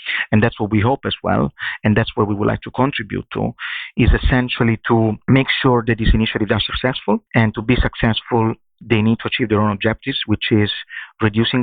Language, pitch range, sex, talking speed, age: English, 110-125 Hz, male, 205 wpm, 40-59